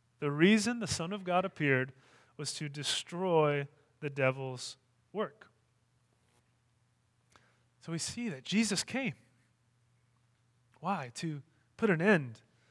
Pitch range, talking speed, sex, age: 130-195 Hz, 115 wpm, male, 20-39